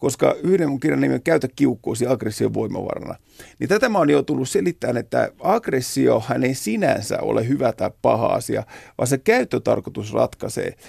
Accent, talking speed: native, 160 wpm